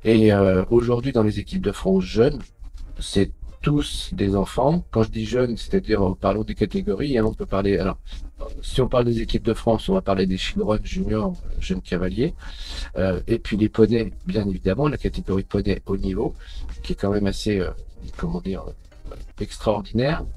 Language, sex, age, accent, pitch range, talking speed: French, male, 50-69, French, 90-120 Hz, 185 wpm